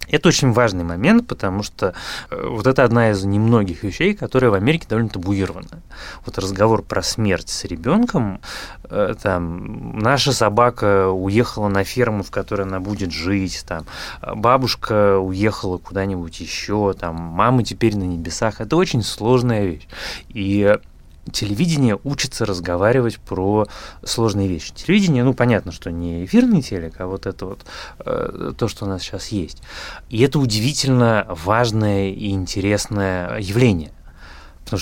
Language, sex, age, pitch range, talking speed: Russian, male, 20-39, 95-115 Hz, 140 wpm